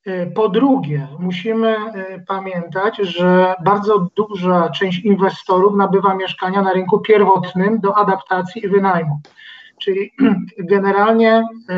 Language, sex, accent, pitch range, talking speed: Polish, male, native, 185-210 Hz, 100 wpm